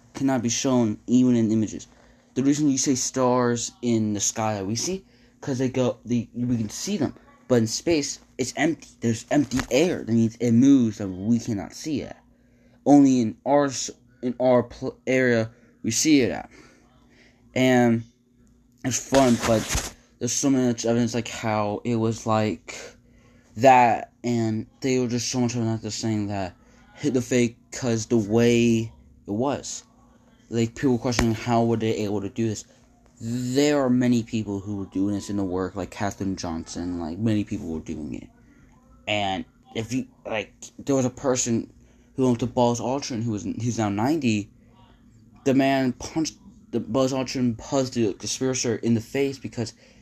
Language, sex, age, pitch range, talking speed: English, male, 20-39, 110-125 Hz, 175 wpm